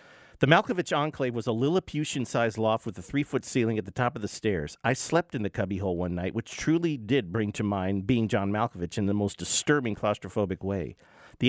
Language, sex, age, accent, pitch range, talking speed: English, male, 50-69, American, 95-130 Hz, 210 wpm